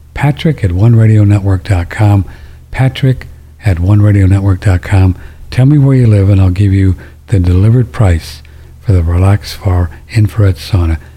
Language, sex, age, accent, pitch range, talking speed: English, male, 60-79, American, 75-105 Hz, 125 wpm